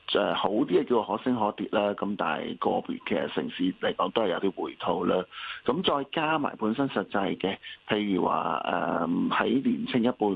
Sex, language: male, Chinese